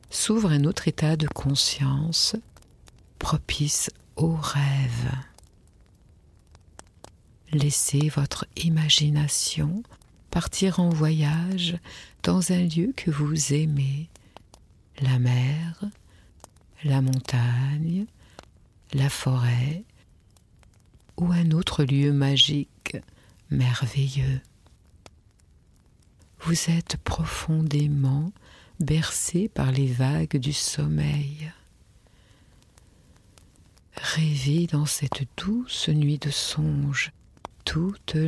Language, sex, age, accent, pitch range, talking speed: French, female, 50-69, French, 100-155 Hz, 80 wpm